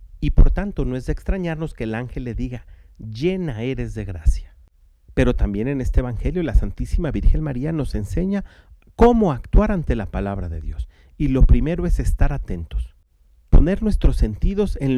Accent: Mexican